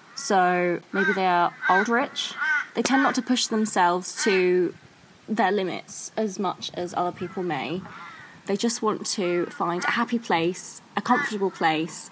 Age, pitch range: 20-39, 180-225 Hz